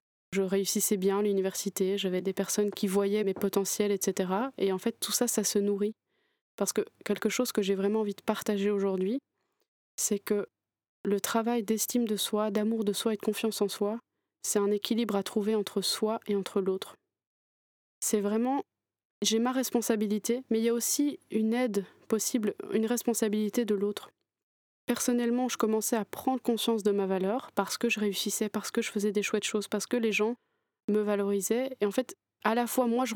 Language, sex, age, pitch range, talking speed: French, female, 20-39, 200-230 Hz, 195 wpm